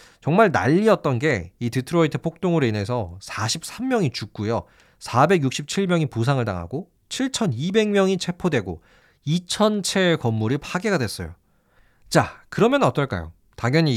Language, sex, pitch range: Korean, male, 110-175 Hz